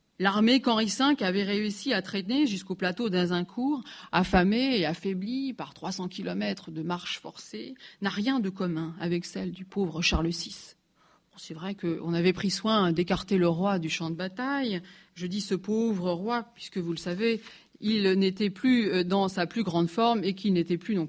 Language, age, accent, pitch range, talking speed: French, 30-49, French, 175-220 Hz, 180 wpm